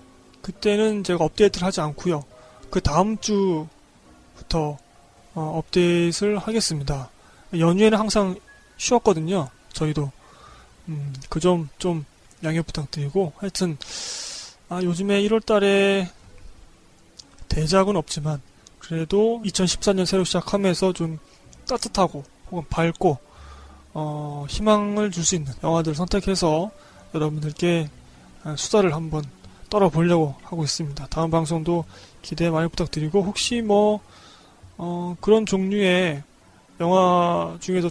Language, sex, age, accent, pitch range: Korean, male, 20-39, native, 145-190 Hz